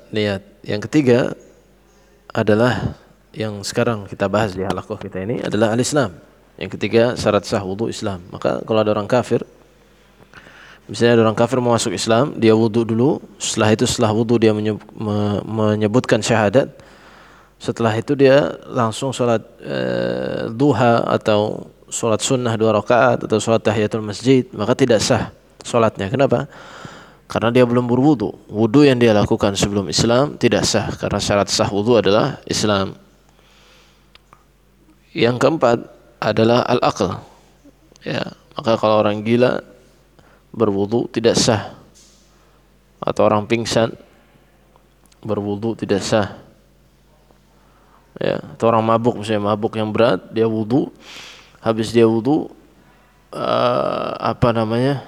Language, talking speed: Indonesian, 125 wpm